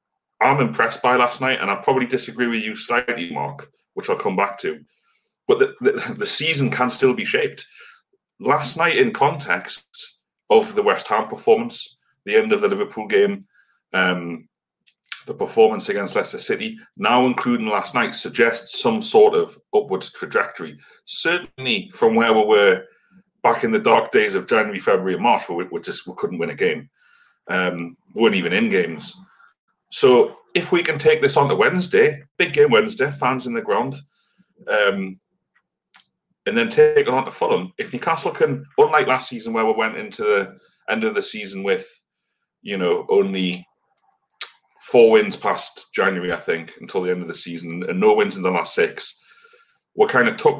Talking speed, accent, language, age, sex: 180 wpm, British, English, 30-49, male